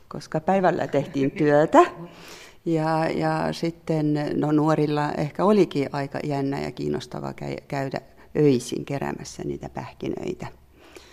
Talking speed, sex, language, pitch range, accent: 110 wpm, female, Finnish, 145-185 Hz, native